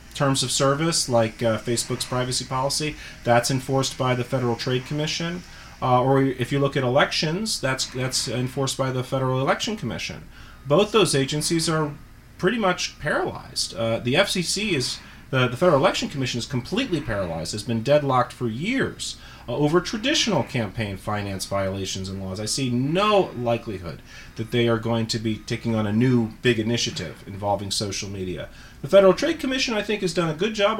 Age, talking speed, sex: 30-49, 180 wpm, male